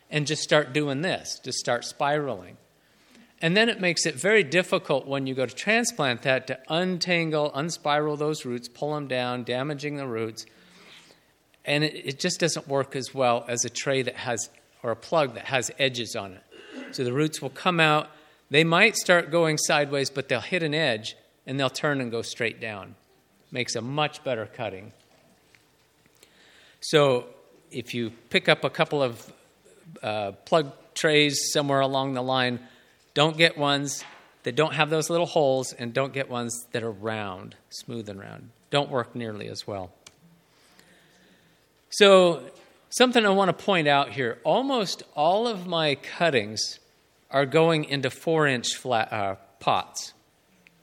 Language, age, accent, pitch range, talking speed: English, 50-69, American, 125-165 Hz, 165 wpm